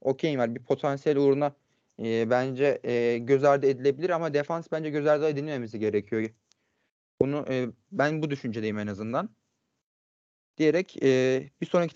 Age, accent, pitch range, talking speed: 30-49, native, 135-170 Hz, 140 wpm